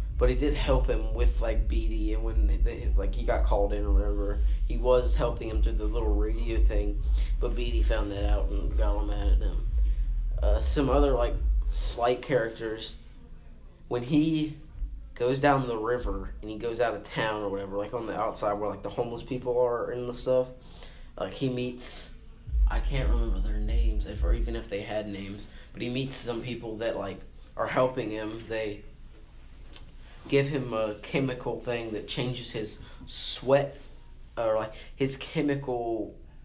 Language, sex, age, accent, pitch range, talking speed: English, male, 20-39, American, 100-120 Hz, 185 wpm